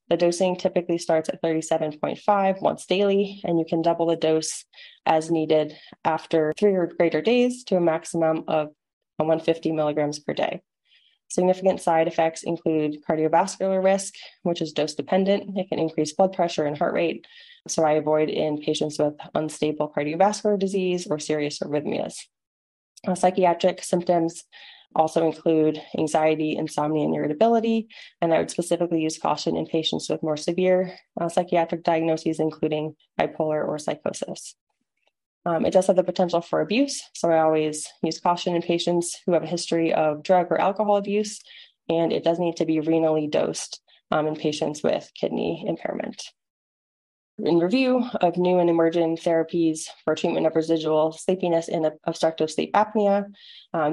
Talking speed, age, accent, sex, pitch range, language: 155 wpm, 20-39, American, female, 155-185 Hz, English